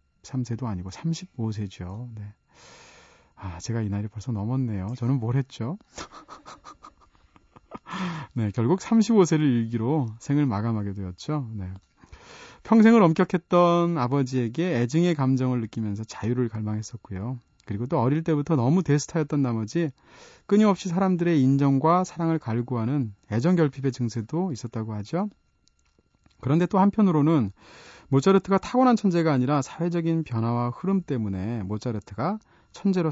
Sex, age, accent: male, 40-59, native